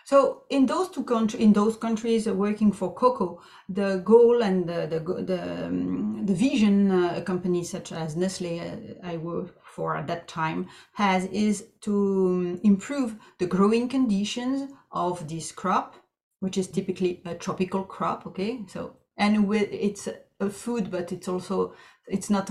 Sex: female